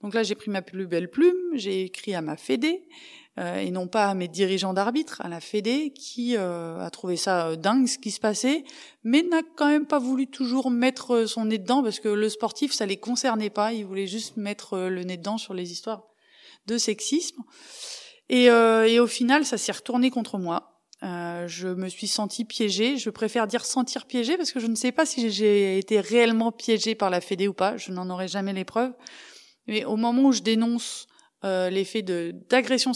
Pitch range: 190-245 Hz